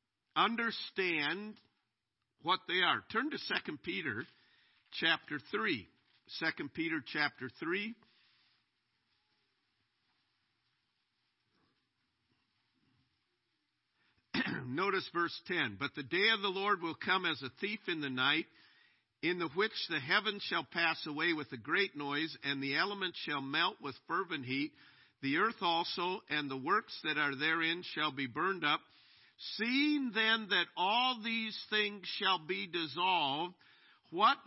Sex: male